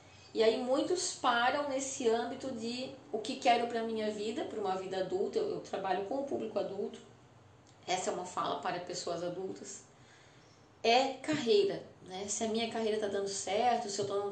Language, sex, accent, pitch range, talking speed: Portuguese, female, Brazilian, 190-240 Hz, 195 wpm